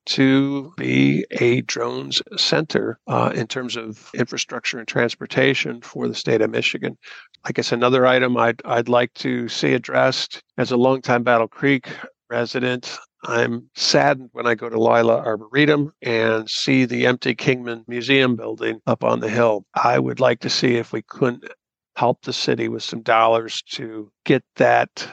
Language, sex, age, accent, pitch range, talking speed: English, male, 50-69, American, 115-130 Hz, 165 wpm